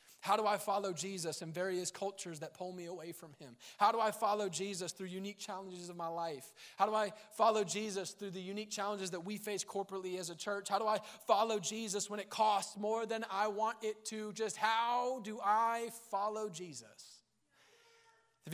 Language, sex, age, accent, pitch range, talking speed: English, male, 20-39, American, 165-215 Hz, 200 wpm